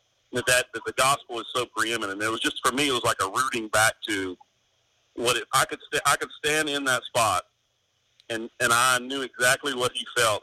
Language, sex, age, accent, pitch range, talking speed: English, male, 40-59, American, 105-130 Hz, 215 wpm